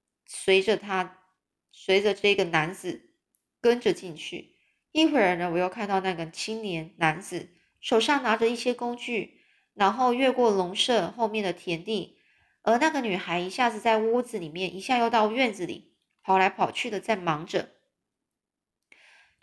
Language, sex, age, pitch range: Chinese, female, 20-39, 185-240 Hz